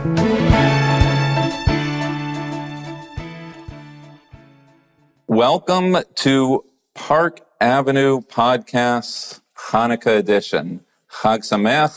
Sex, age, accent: male, 40-59, American